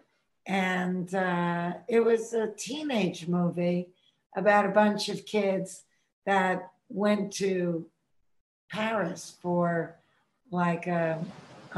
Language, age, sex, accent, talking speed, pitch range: English, 60-79, female, American, 95 wpm, 175-205 Hz